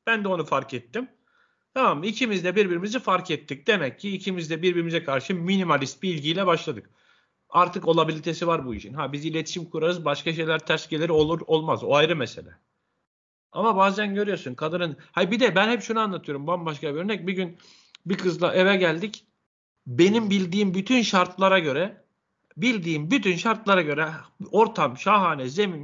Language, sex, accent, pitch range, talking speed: Turkish, male, native, 165-220 Hz, 165 wpm